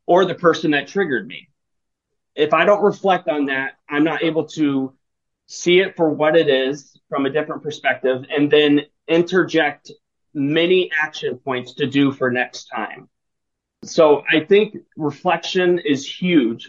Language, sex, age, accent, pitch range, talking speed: English, male, 30-49, American, 145-170 Hz, 155 wpm